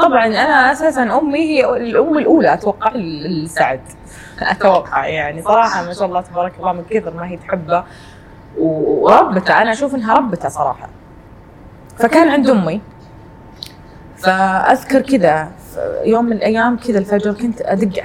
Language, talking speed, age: Arabic, 135 wpm, 20-39